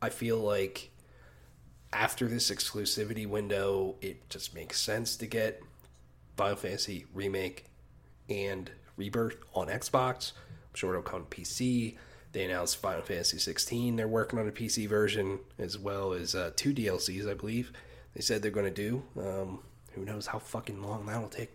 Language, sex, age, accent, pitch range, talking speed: English, male, 30-49, American, 100-125 Hz, 160 wpm